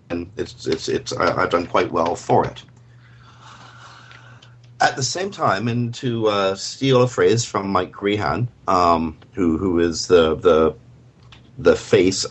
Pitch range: 95-120 Hz